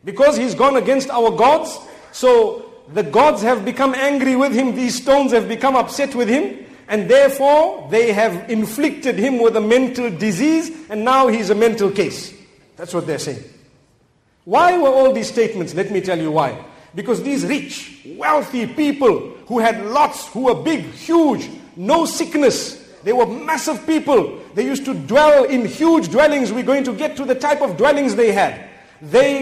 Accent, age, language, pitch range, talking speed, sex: South African, 50-69, English, 220-285 Hz, 180 wpm, male